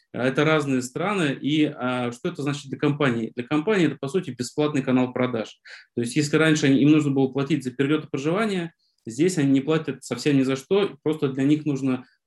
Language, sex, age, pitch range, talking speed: Russian, male, 20-39, 130-150 Hz, 200 wpm